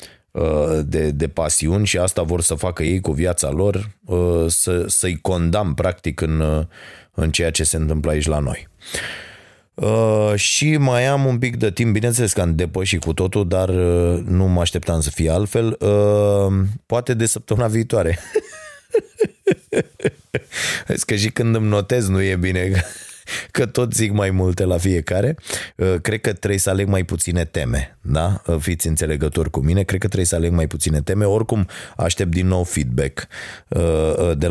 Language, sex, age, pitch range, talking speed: Romanian, male, 20-39, 85-105 Hz, 160 wpm